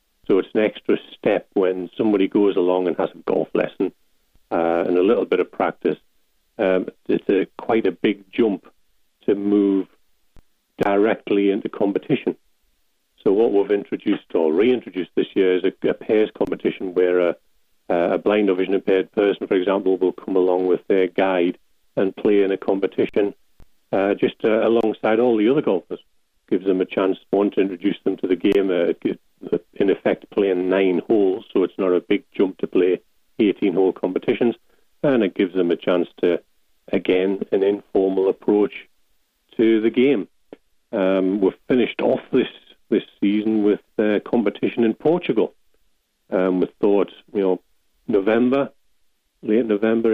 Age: 40-59